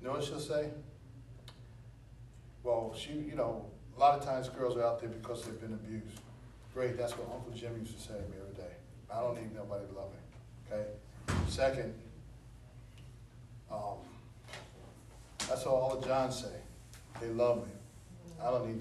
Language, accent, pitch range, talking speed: English, American, 115-130 Hz, 170 wpm